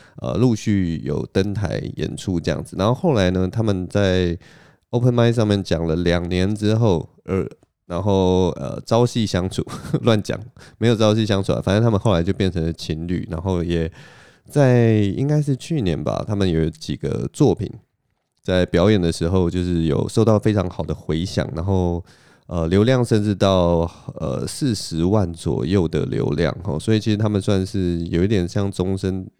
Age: 20-39